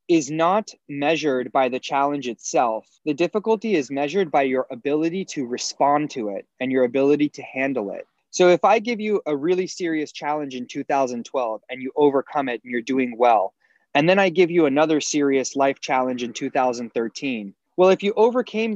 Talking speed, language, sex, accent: 185 wpm, English, male, American